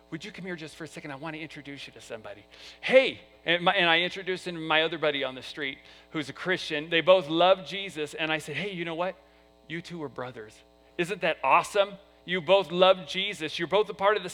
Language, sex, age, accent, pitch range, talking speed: English, male, 40-59, American, 120-180 Hz, 250 wpm